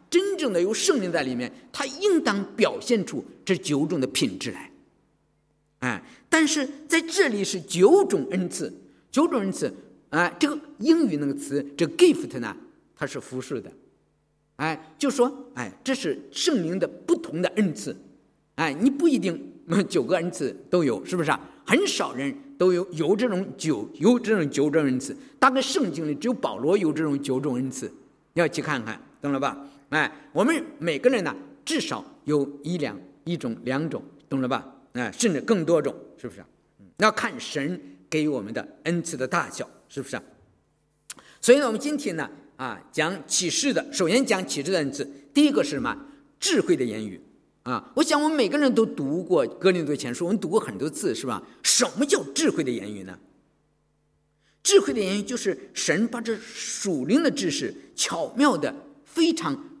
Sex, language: male, English